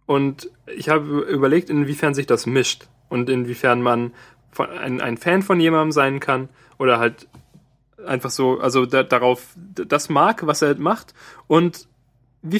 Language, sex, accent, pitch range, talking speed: German, male, German, 125-160 Hz, 150 wpm